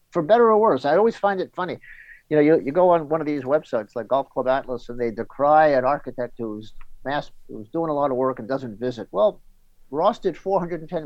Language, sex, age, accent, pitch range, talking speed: English, male, 50-69, American, 115-155 Hz, 235 wpm